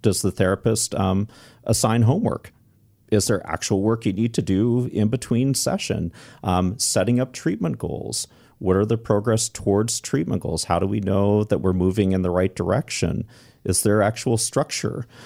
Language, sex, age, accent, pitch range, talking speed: English, male, 40-59, American, 90-115 Hz, 175 wpm